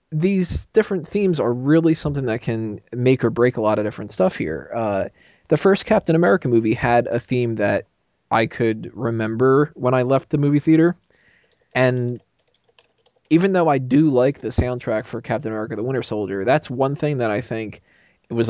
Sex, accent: male, American